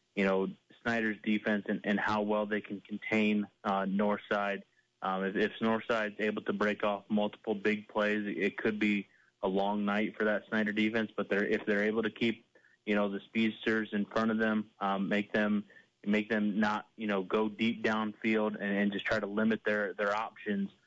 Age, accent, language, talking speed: 20-39, American, English, 200 wpm